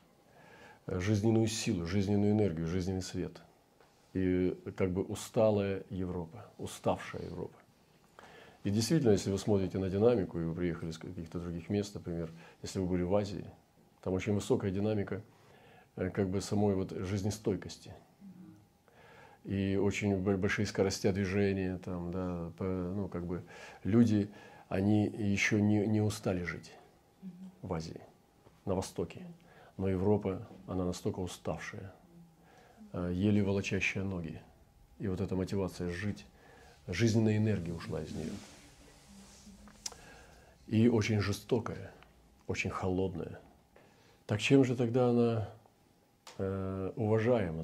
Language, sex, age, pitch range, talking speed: Russian, male, 40-59, 90-105 Hz, 115 wpm